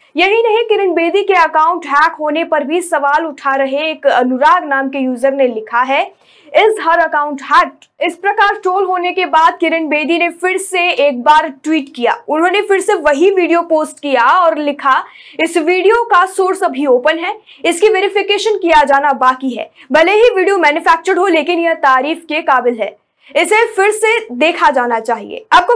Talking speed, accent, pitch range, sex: 185 wpm, native, 275-370 Hz, female